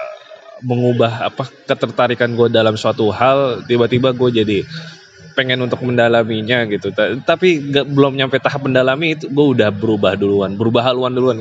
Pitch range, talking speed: 115-165 Hz, 140 wpm